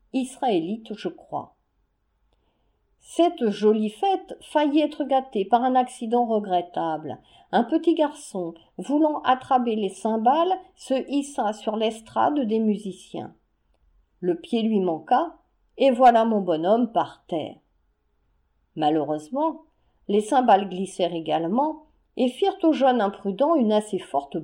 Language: French